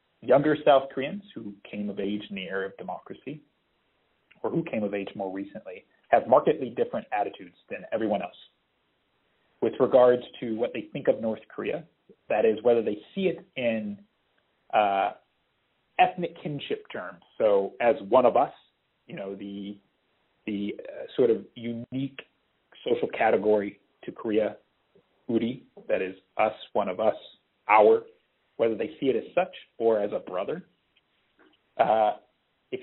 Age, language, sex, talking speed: 30-49, English, male, 150 wpm